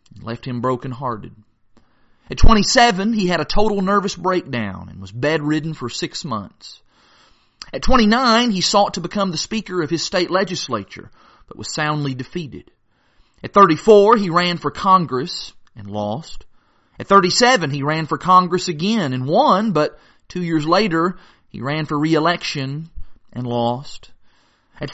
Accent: American